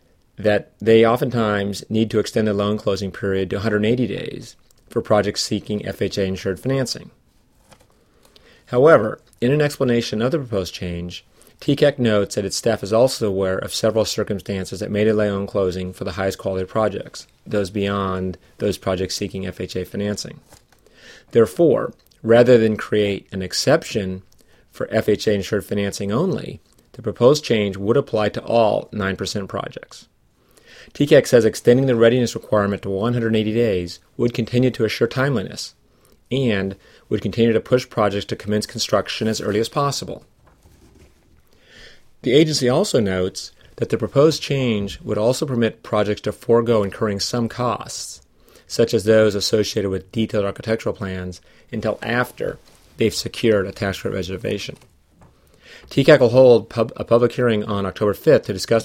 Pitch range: 95-115 Hz